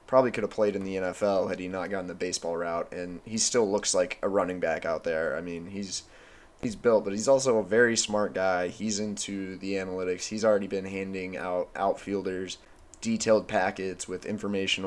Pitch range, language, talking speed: 90-105 Hz, English, 200 wpm